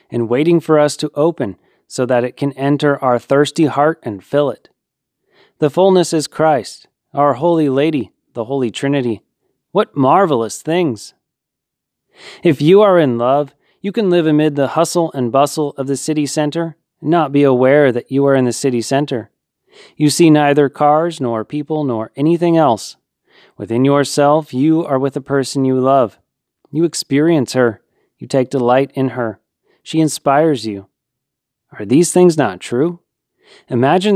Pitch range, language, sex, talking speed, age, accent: 125-155 Hz, English, male, 165 wpm, 30-49, American